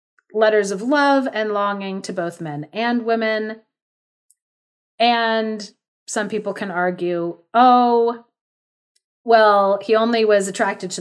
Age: 30-49